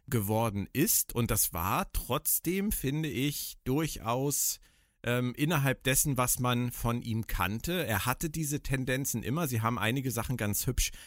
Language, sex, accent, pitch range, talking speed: German, male, German, 115-145 Hz, 150 wpm